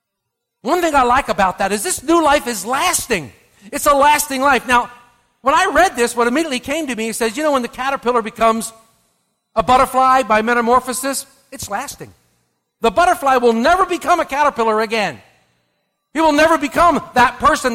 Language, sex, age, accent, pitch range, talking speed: English, male, 50-69, American, 220-280 Hz, 185 wpm